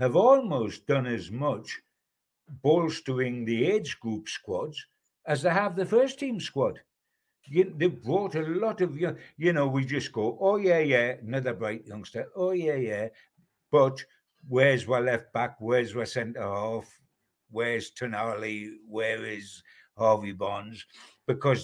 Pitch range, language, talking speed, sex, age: 125-175 Hz, English, 140 wpm, male, 60-79